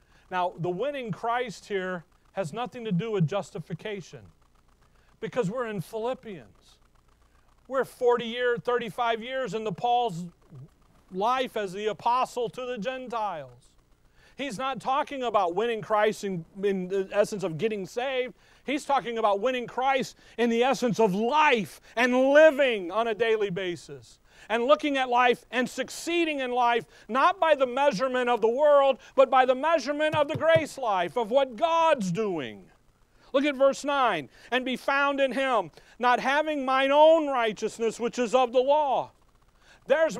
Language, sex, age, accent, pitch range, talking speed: English, male, 40-59, American, 200-275 Hz, 155 wpm